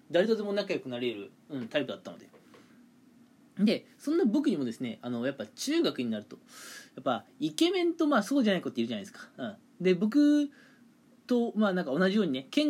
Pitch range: 185-270 Hz